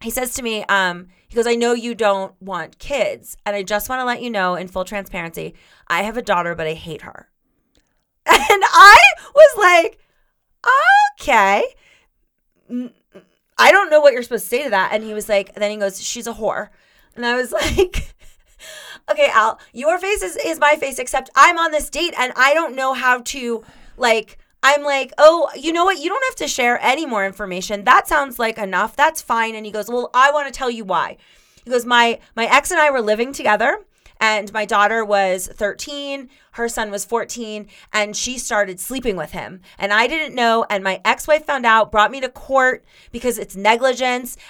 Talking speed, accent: 205 wpm, American